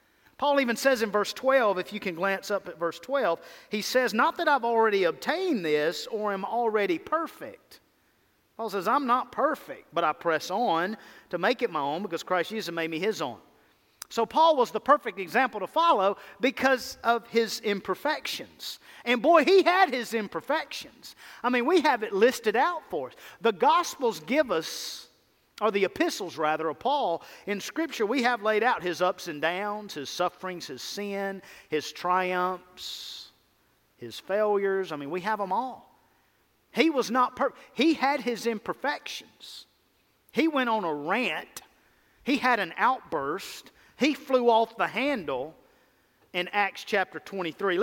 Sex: male